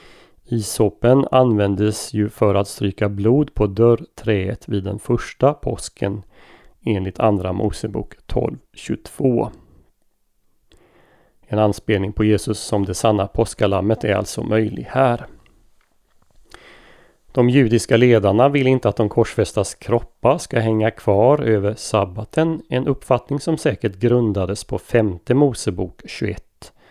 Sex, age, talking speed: male, 30-49, 115 wpm